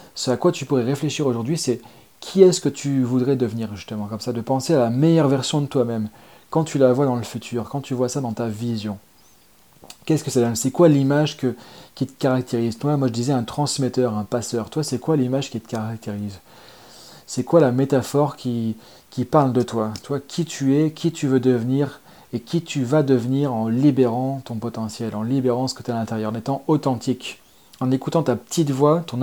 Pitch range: 120-145 Hz